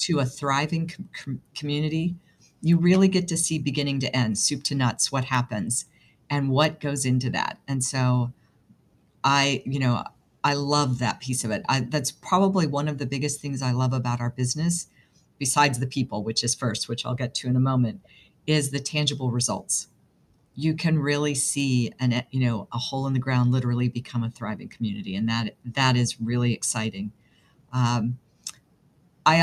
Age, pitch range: 50-69, 125-145 Hz